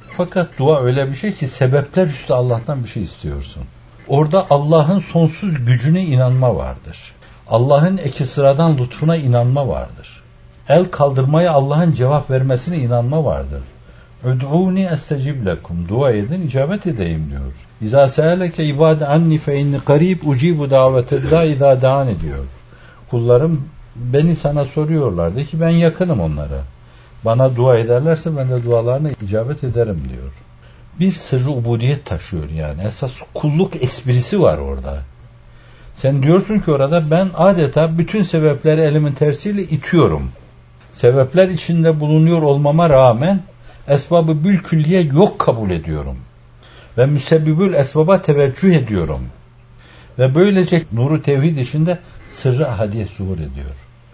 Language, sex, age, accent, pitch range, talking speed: Turkish, male, 60-79, native, 110-160 Hz, 125 wpm